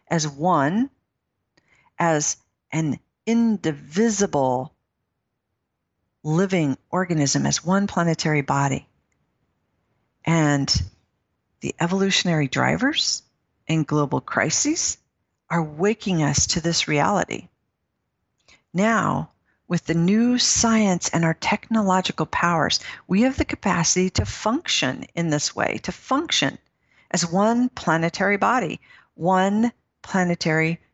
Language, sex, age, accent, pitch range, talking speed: English, female, 50-69, American, 155-225 Hz, 95 wpm